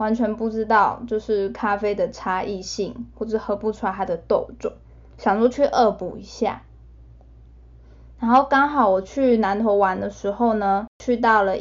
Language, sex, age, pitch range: Chinese, female, 10-29, 195-240 Hz